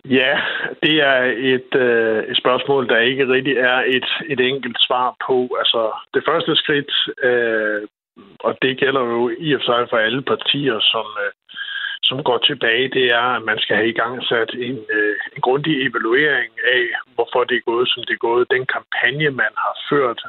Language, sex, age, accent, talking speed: Danish, male, 60-79, native, 175 wpm